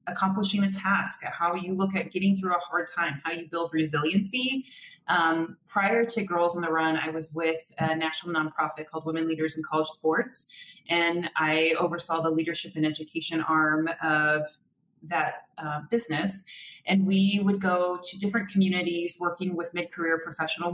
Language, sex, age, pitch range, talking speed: English, female, 30-49, 160-195 Hz, 170 wpm